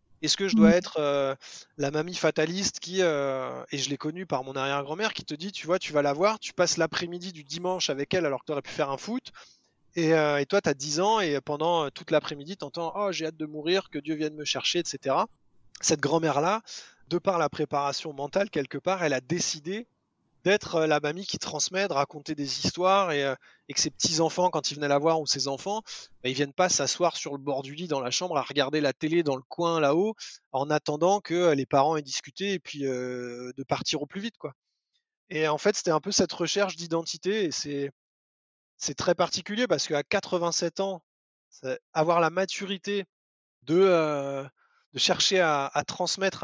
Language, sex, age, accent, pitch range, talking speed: French, male, 20-39, French, 140-185 Hz, 215 wpm